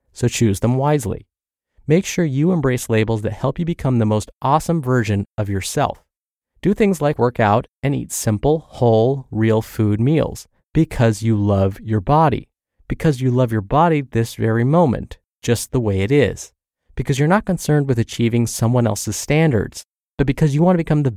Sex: male